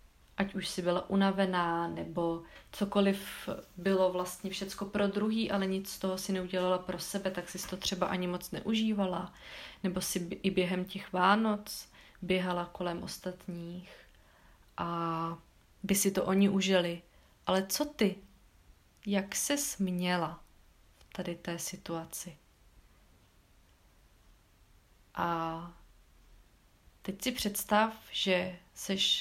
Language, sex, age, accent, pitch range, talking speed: Czech, female, 20-39, native, 170-200 Hz, 120 wpm